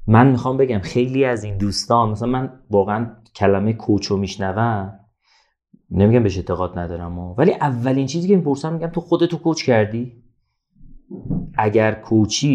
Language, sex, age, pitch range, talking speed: Persian, male, 30-49, 100-135 Hz, 150 wpm